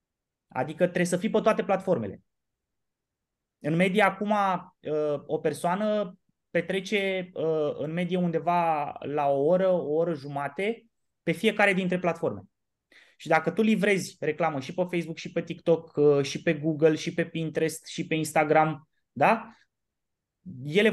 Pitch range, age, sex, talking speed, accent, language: 135-180 Hz, 20-39, male, 140 wpm, native, Romanian